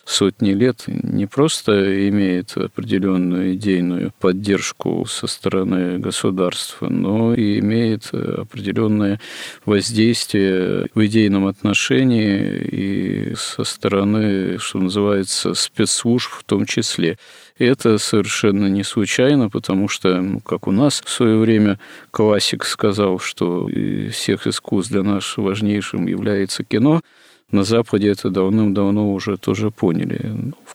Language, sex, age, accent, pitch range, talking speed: Russian, male, 40-59, native, 95-110 Hz, 115 wpm